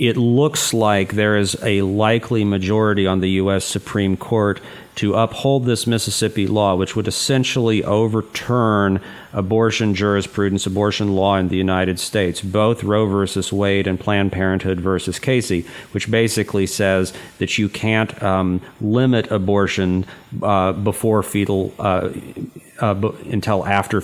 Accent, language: American, English